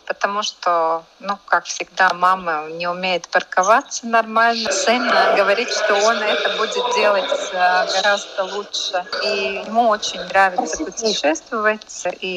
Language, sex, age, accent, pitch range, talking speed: Russian, female, 30-49, native, 175-205 Hz, 120 wpm